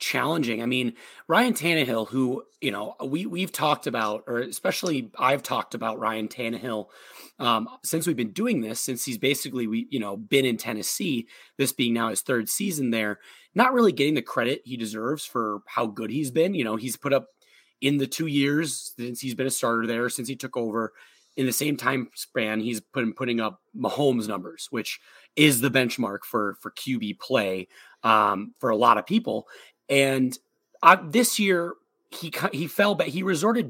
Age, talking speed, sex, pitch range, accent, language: 30-49, 190 wpm, male, 115-150 Hz, American, English